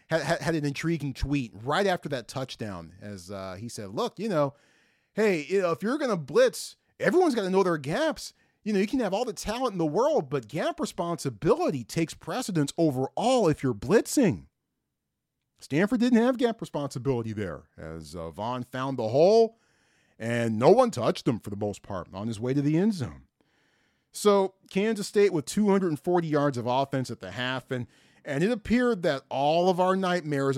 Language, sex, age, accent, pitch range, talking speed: English, male, 40-59, American, 130-205 Hz, 190 wpm